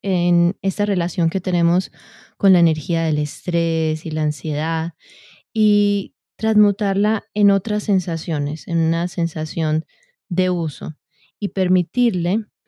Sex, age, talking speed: female, 20-39, 120 wpm